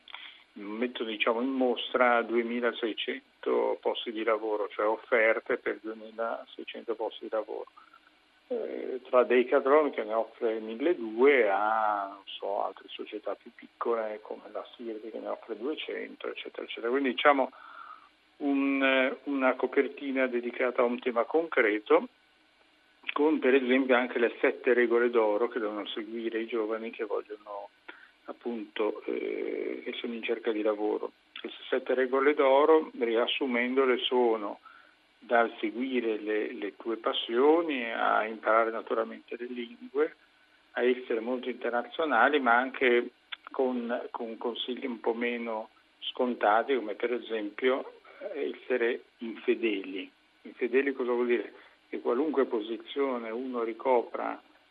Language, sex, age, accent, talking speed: Italian, male, 50-69, native, 125 wpm